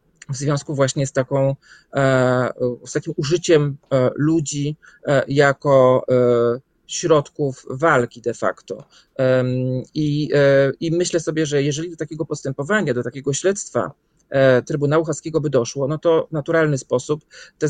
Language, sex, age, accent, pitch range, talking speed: Polish, male, 40-59, native, 130-155 Hz, 120 wpm